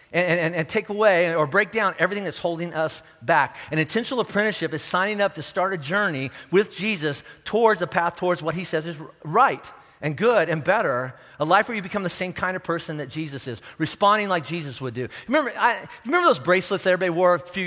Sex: male